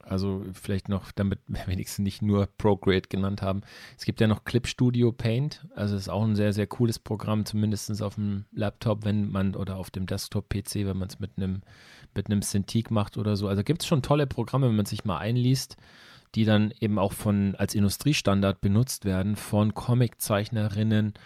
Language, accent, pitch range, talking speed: German, German, 95-110 Hz, 190 wpm